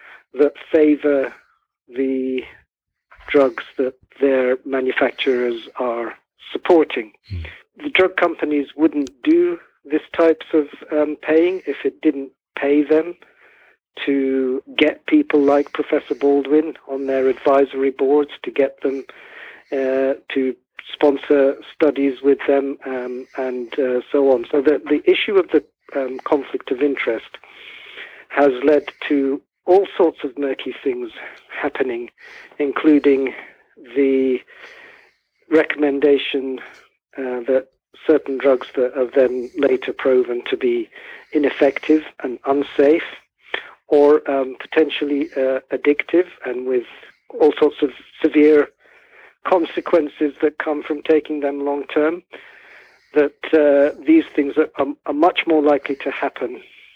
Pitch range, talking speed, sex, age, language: 135-155 Hz, 120 wpm, male, 50-69, English